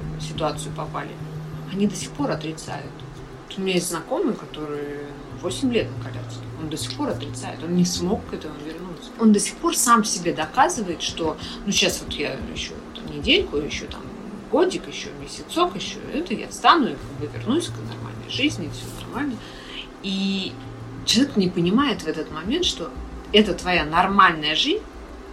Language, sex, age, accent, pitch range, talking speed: Russian, female, 30-49, native, 130-190 Hz, 165 wpm